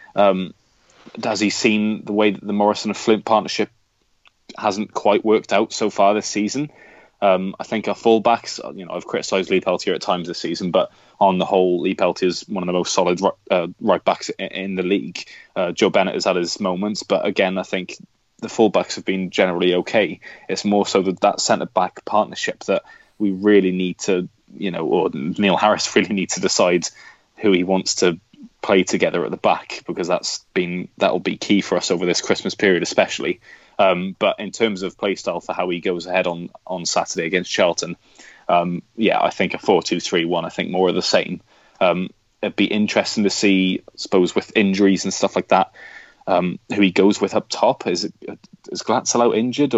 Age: 20-39